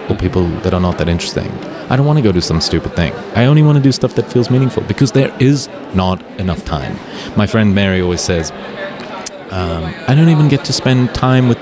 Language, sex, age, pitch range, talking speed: English, male, 30-49, 85-105 Hz, 230 wpm